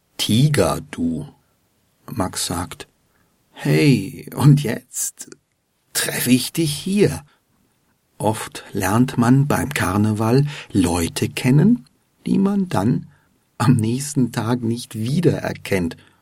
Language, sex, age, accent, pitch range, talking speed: German, male, 50-69, German, 110-145 Hz, 95 wpm